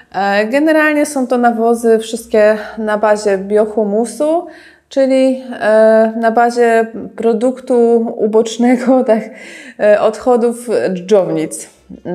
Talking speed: 80 wpm